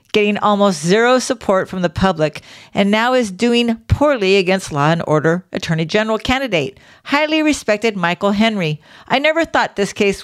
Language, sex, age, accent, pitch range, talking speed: English, female, 50-69, American, 170-235 Hz, 165 wpm